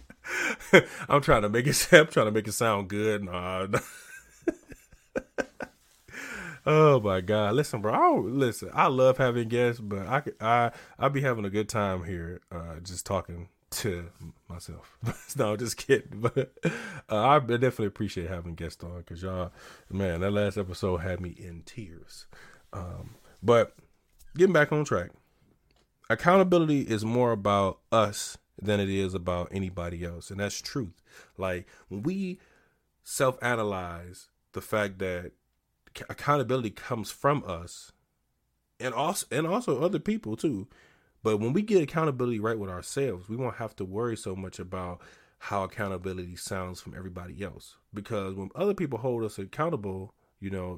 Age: 20-39